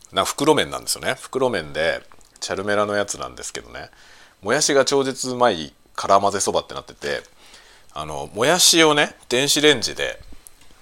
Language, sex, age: Japanese, male, 40-59